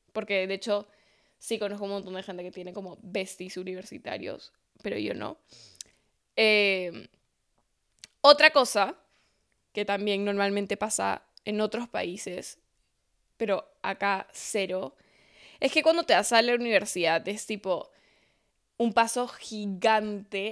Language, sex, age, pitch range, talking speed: Spanish, female, 10-29, 190-220 Hz, 130 wpm